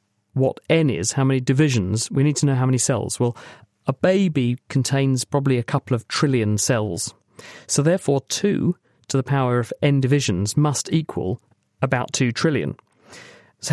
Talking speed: 165 wpm